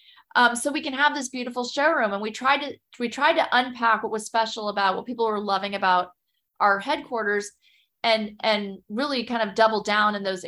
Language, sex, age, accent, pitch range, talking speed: English, female, 30-49, American, 210-265 Hz, 205 wpm